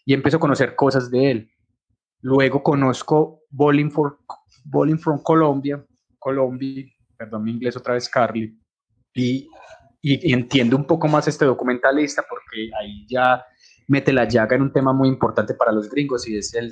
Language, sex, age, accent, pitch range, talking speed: Spanish, male, 20-39, Colombian, 115-135 Hz, 160 wpm